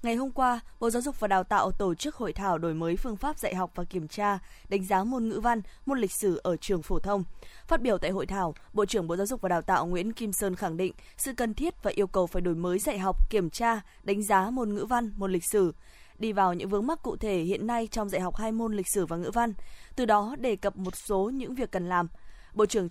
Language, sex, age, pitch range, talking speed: Vietnamese, female, 20-39, 190-235 Hz, 270 wpm